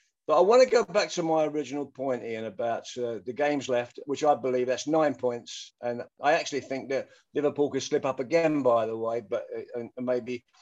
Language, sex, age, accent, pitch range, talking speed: English, male, 50-69, British, 145-200 Hz, 220 wpm